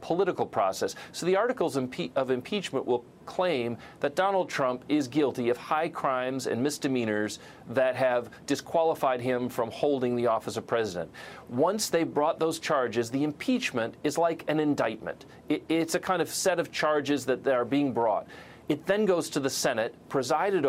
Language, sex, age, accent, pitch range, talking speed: English, male, 40-59, American, 130-165 Hz, 170 wpm